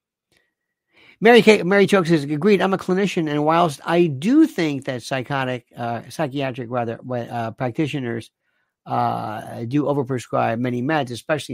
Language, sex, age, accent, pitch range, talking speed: English, male, 50-69, American, 125-170 Hz, 140 wpm